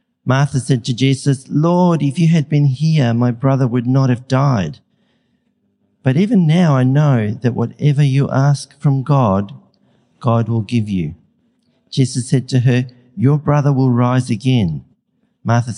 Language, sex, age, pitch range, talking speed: English, male, 50-69, 115-145 Hz, 155 wpm